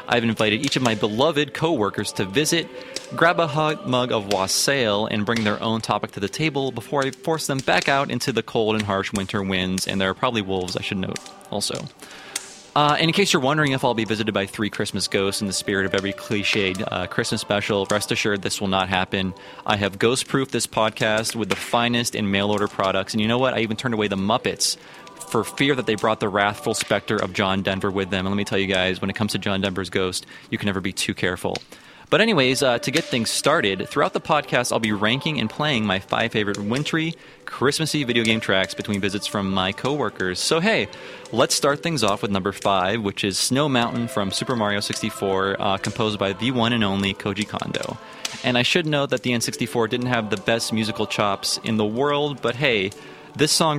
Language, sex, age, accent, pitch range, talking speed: English, male, 30-49, American, 100-130 Hz, 225 wpm